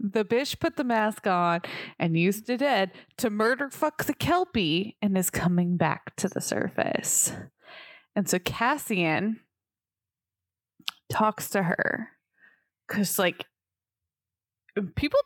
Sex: female